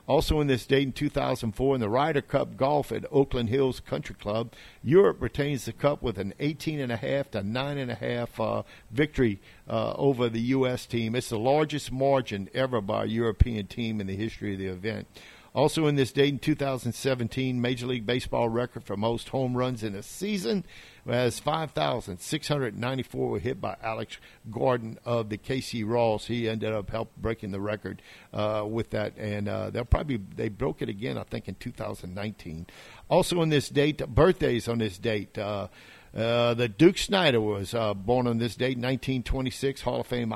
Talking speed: 180 wpm